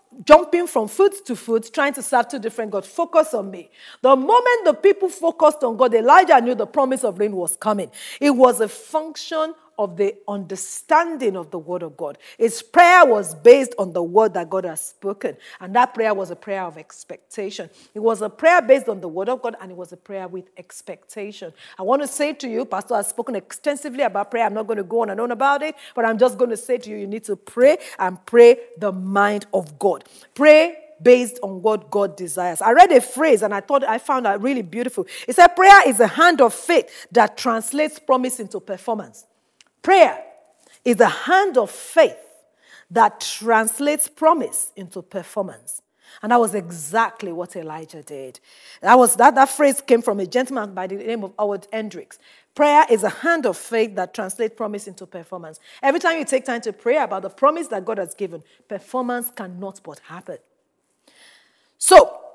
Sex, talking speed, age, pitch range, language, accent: female, 205 wpm, 40-59, 200-300 Hz, English, Nigerian